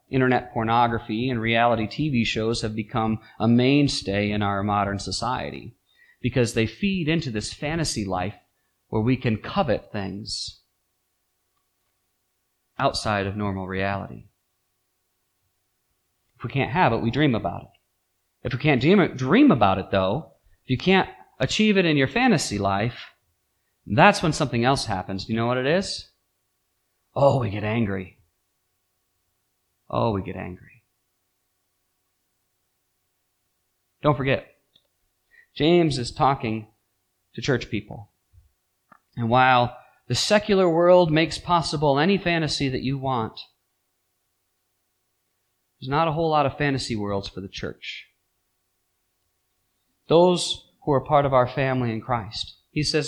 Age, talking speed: 30-49, 130 wpm